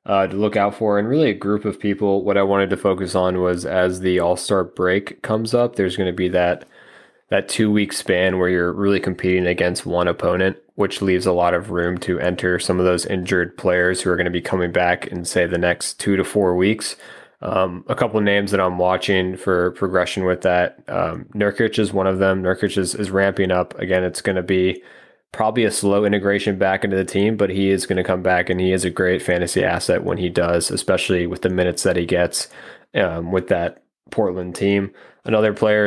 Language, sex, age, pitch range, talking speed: English, male, 20-39, 90-100 Hz, 225 wpm